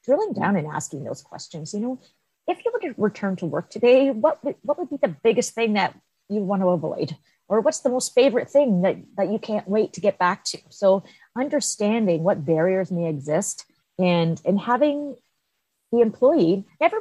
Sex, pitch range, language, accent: female, 170-235 Hz, English, American